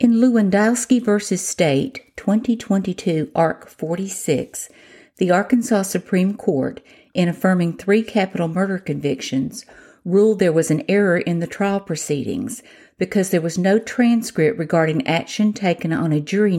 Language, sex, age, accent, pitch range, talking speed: English, female, 50-69, American, 165-215 Hz, 135 wpm